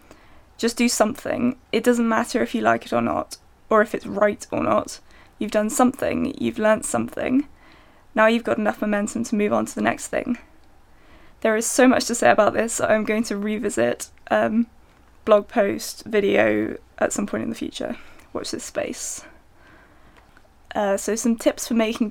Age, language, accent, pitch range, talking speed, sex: 20-39, English, British, 215-265 Hz, 185 wpm, female